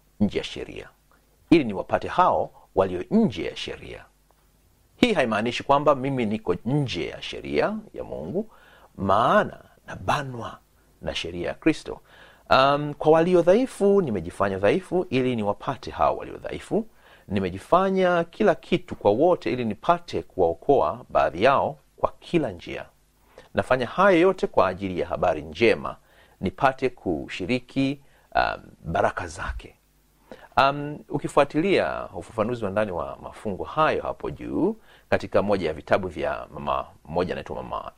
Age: 40-59